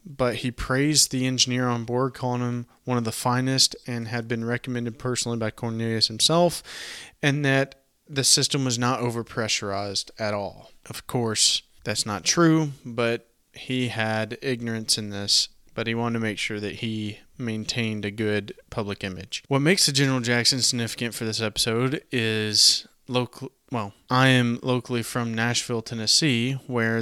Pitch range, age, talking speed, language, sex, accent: 110-130 Hz, 20-39, 160 wpm, English, male, American